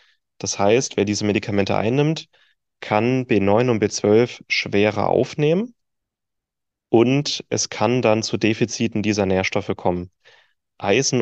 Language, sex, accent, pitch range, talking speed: German, male, German, 95-115 Hz, 120 wpm